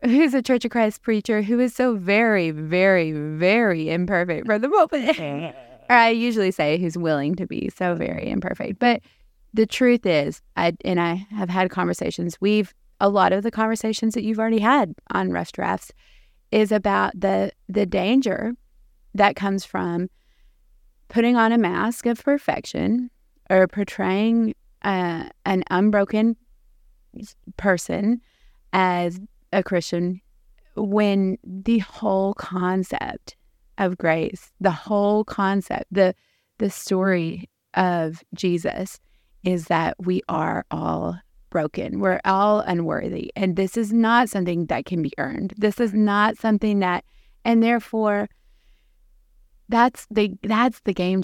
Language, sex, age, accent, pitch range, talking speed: English, female, 20-39, American, 180-225 Hz, 135 wpm